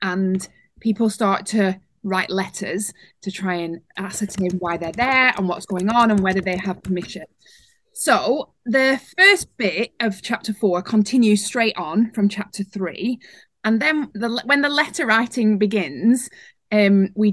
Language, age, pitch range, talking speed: English, 20-39, 195-240 Hz, 150 wpm